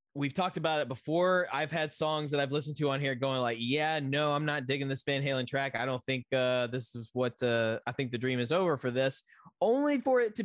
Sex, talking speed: male, 260 wpm